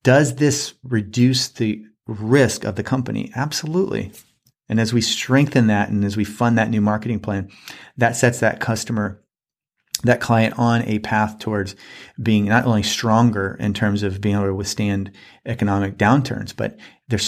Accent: American